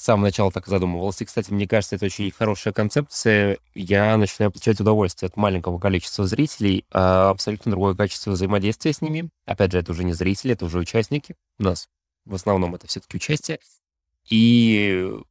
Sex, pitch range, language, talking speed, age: male, 90-110 Hz, Russian, 175 wpm, 20-39